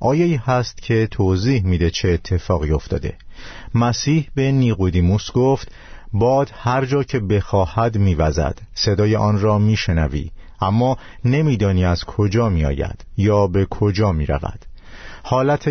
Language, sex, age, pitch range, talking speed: Persian, male, 50-69, 90-120 Hz, 120 wpm